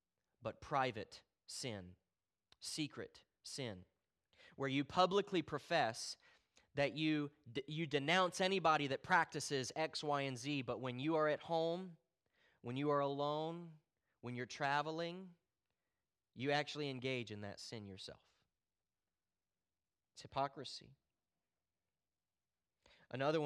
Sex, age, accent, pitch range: male, 30-49, American, 135-195 Hz